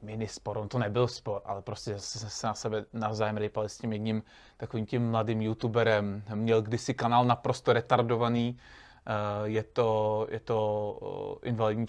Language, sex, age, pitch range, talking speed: Czech, male, 20-39, 115-125 Hz, 155 wpm